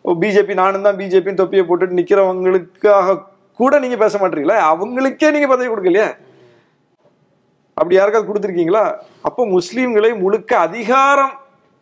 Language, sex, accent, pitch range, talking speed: Tamil, male, native, 160-205 Hz, 110 wpm